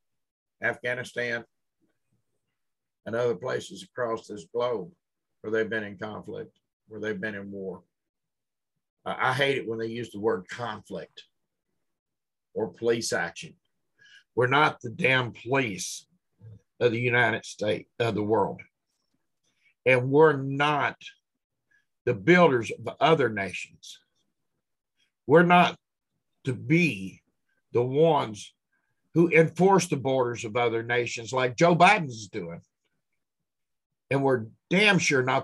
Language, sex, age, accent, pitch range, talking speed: English, male, 50-69, American, 115-165 Hz, 120 wpm